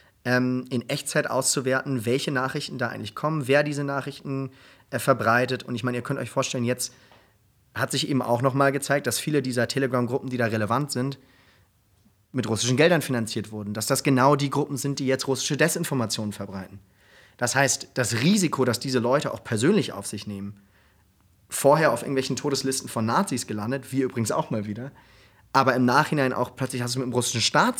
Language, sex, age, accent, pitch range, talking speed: German, male, 30-49, German, 110-135 Hz, 185 wpm